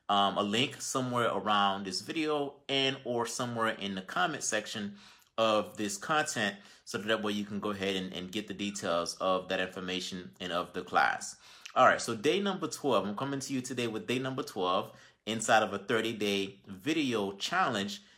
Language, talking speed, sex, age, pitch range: English, 190 wpm, male, 30-49, 105-135 Hz